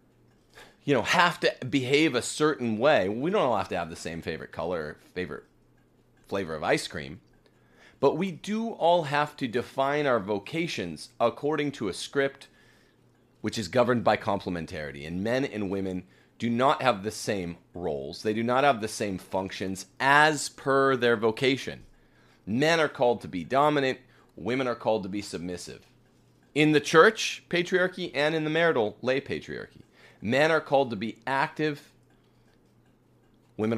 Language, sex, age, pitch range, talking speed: English, male, 30-49, 95-135 Hz, 160 wpm